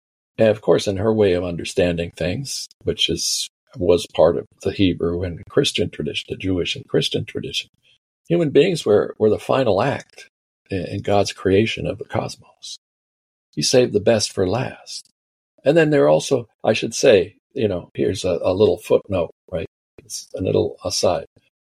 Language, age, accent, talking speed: English, 50-69, American, 175 wpm